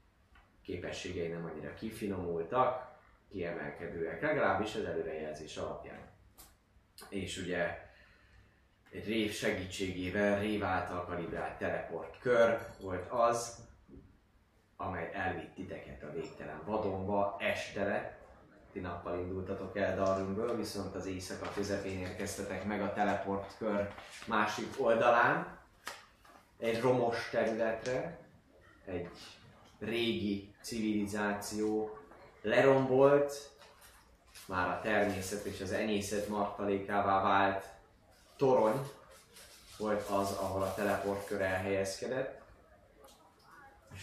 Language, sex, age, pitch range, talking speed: Hungarian, male, 20-39, 95-105 Hz, 85 wpm